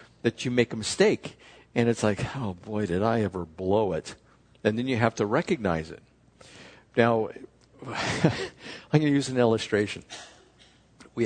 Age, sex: 60-79, male